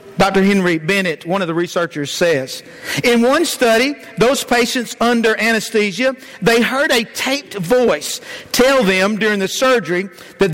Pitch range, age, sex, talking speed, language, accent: 195-255 Hz, 50-69, male, 150 wpm, English, American